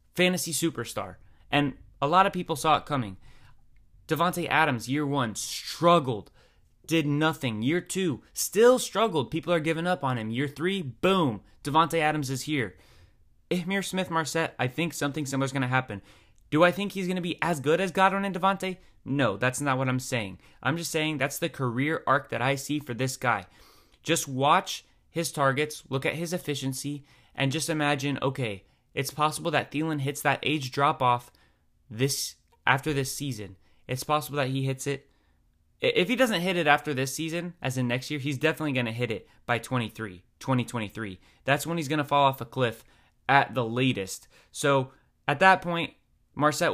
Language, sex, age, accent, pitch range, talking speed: English, male, 20-39, American, 120-160 Hz, 185 wpm